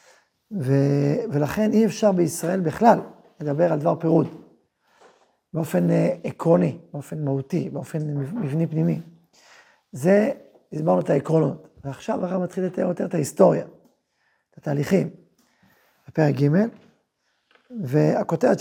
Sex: male